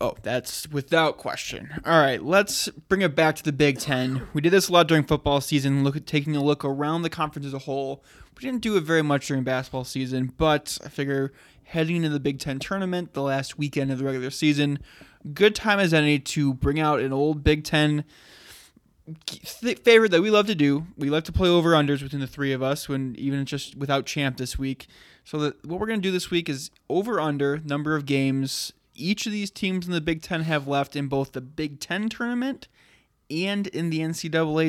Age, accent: 20-39, American